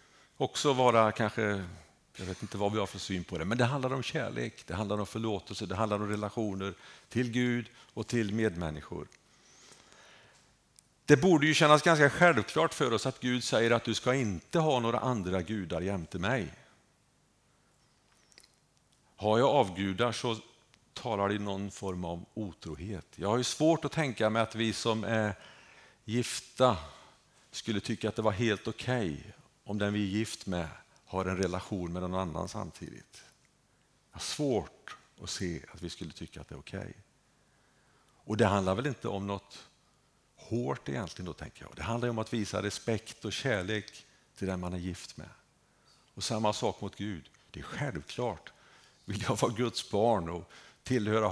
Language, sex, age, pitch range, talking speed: Swedish, male, 50-69, 95-120 Hz, 175 wpm